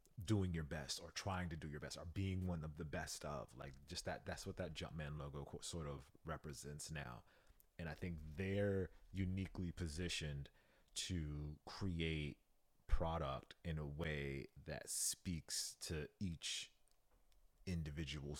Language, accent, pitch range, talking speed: English, American, 75-95 Hz, 145 wpm